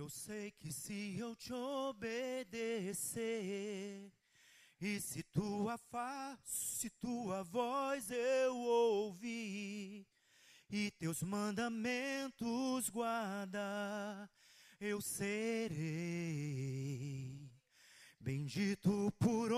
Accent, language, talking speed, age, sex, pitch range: Brazilian, Portuguese, 75 wpm, 30-49, male, 165-245 Hz